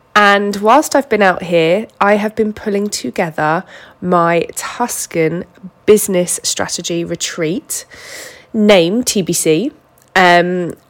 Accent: British